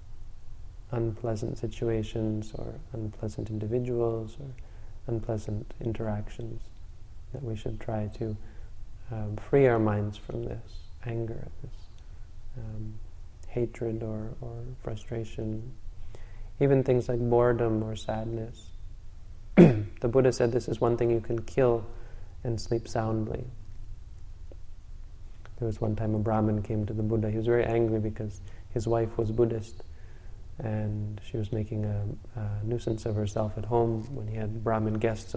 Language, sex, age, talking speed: English, male, 20-39, 135 wpm